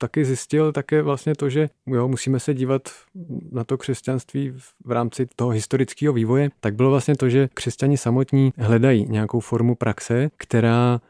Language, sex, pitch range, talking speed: Czech, male, 110-125 Hz, 160 wpm